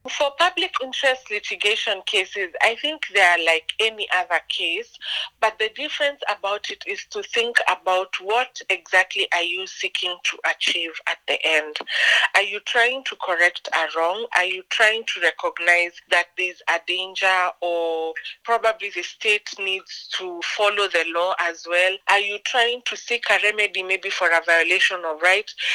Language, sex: English, female